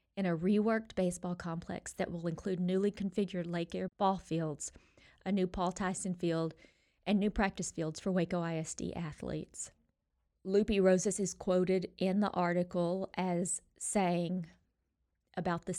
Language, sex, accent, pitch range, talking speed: English, female, American, 170-195 Hz, 145 wpm